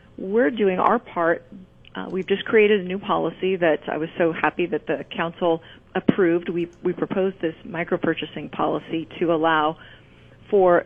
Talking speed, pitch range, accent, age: 165 wpm, 155-185 Hz, American, 40-59